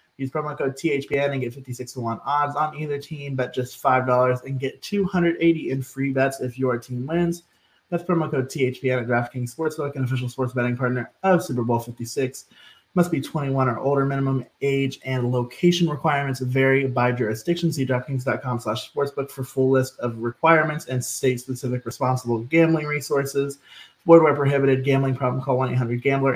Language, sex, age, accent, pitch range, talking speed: English, male, 20-39, American, 125-145 Hz, 170 wpm